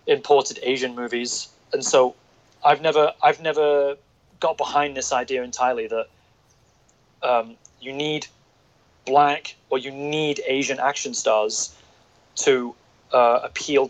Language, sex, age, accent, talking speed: English, male, 30-49, British, 120 wpm